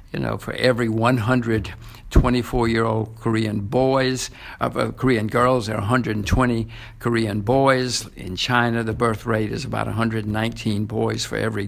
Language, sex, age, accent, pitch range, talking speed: English, male, 60-79, American, 110-120 Hz, 175 wpm